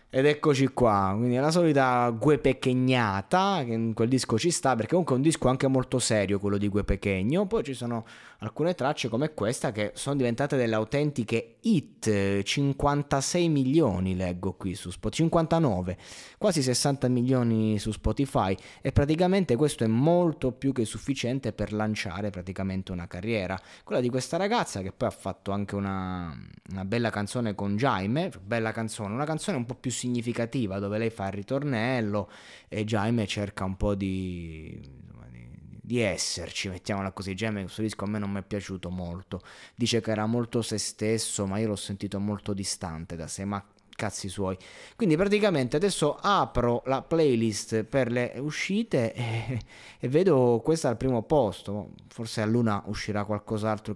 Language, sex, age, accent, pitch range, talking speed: Italian, male, 20-39, native, 100-130 Hz, 170 wpm